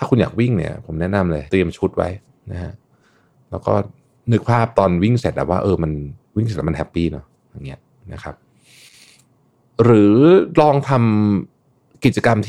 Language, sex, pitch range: Thai, male, 90-120 Hz